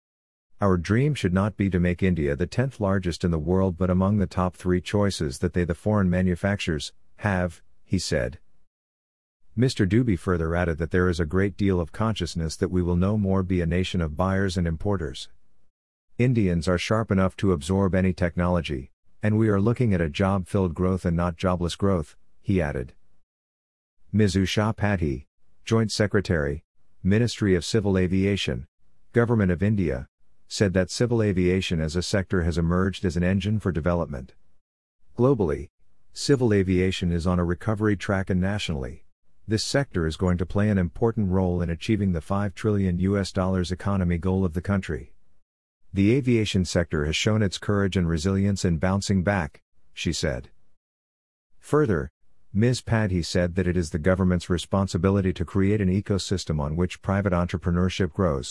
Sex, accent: male, American